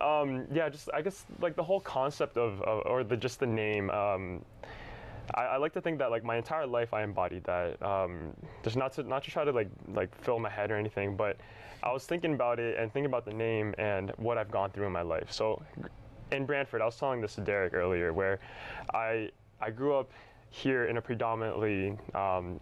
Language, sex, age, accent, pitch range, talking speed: English, male, 10-29, American, 105-125 Hz, 225 wpm